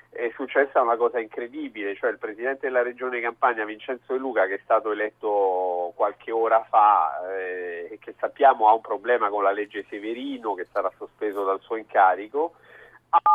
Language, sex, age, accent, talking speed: Italian, male, 40-59, native, 175 wpm